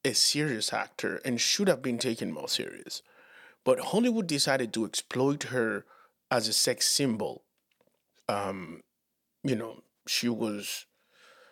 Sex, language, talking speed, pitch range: male, English, 130 wpm, 120-160 Hz